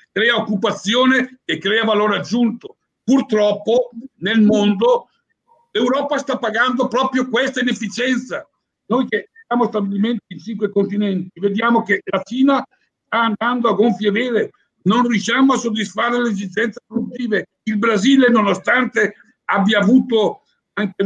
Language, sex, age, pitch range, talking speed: Italian, male, 60-79, 205-250 Hz, 125 wpm